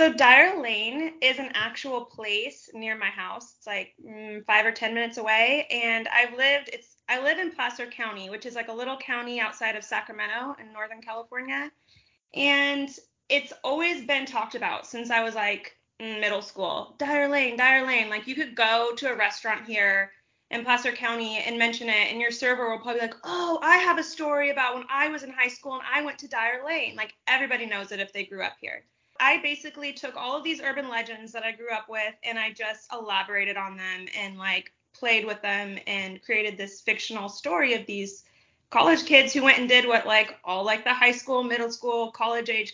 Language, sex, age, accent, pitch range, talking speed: English, female, 20-39, American, 215-265 Hz, 210 wpm